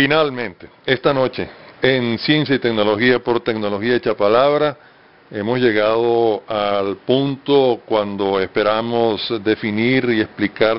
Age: 40-59